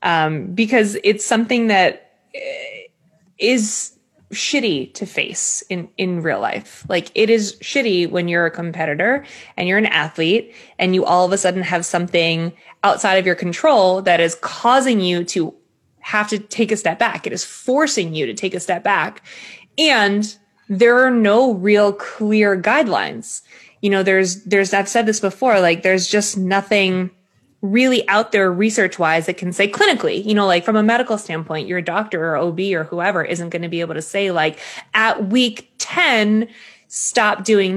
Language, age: English, 20-39